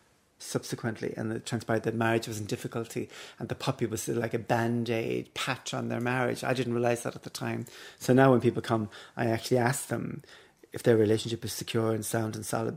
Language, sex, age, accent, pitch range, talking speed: English, male, 30-49, British, 115-125 Hz, 210 wpm